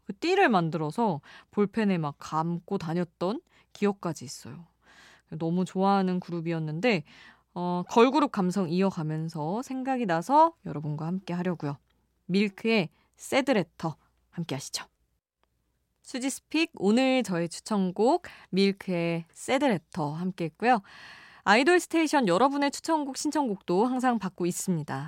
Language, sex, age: Korean, female, 20-39